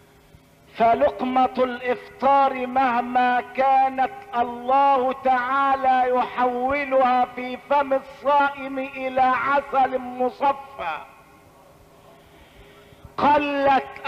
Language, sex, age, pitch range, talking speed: Arabic, male, 50-69, 275-335 Hz, 60 wpm